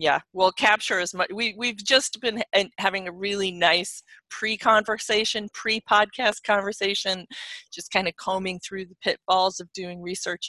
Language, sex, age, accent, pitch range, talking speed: English, female, 30-49, American, 165-210 Hz, 155 wpm